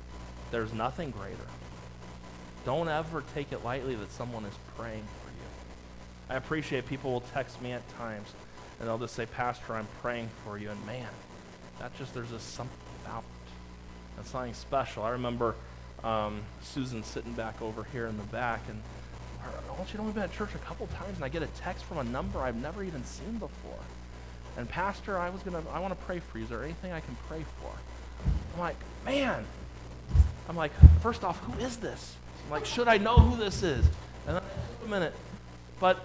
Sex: male